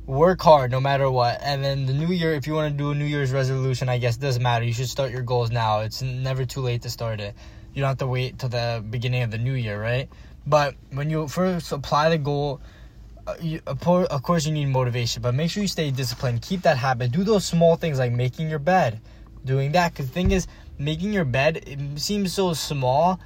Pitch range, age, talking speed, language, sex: 125-155 Hz, 10-29, 245 wpm, English, male